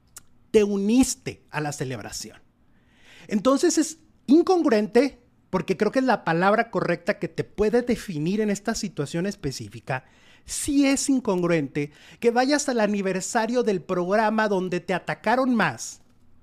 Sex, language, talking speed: male, English, 130 wpm